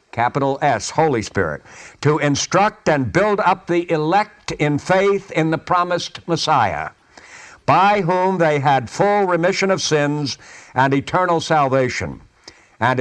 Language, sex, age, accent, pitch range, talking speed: English, male, 60-79, American, 140-185 Hz, 135 wpm